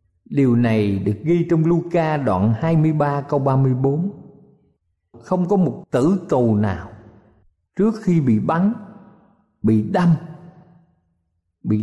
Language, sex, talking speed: Vietnamese, male, 115 wpm